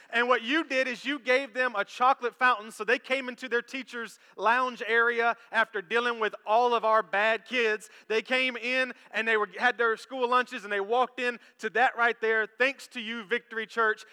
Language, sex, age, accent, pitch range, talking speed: English, male, 30-49, American, 195-240 Hz, 210 wpm